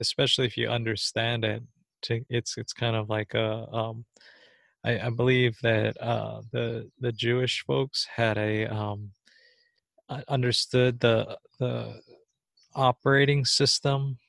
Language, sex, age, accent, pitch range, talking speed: English, male, 20-39, American, 115-130 Hz, 125 wpm